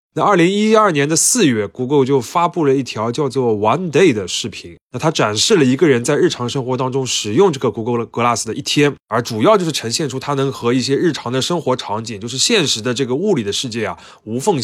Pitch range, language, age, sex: 120-160 Hz, Chinese, 20-39, male